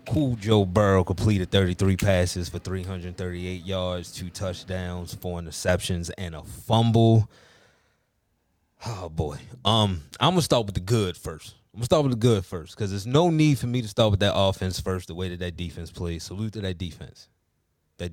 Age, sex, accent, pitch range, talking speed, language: 20-39, male, American, 90-120 Hz, 190 wpm, English